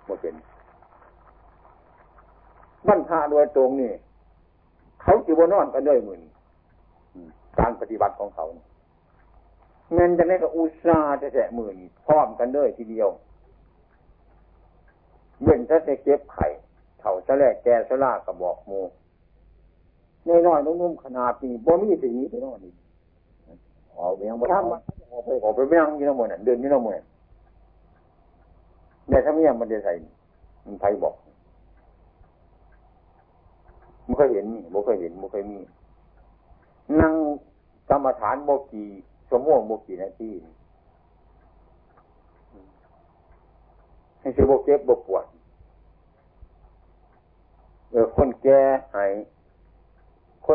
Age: 60-79